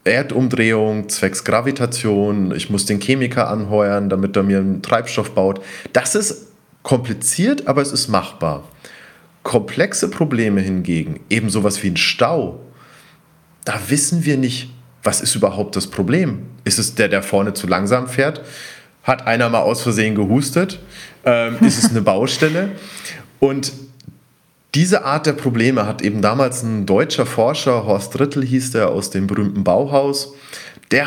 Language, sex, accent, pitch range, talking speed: German, male, German, 105-145 Hz, 145 wpm